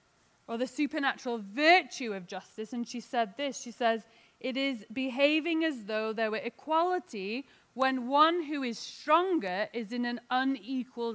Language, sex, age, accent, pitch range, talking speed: English, female, 30-49, British, 240-310 Hz, 155 wpm